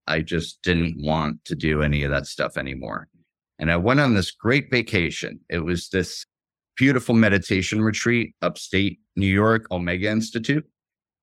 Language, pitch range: English, 90-120 Hz